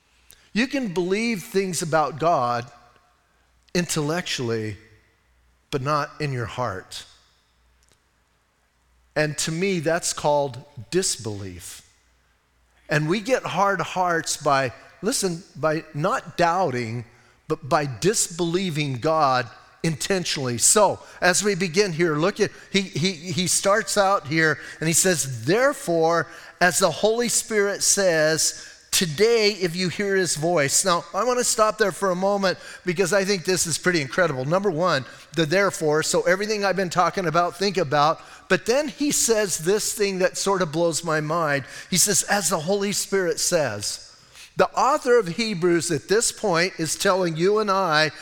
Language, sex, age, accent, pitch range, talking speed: English, male, 40-59, American, 145-195 Hz, 150 wpm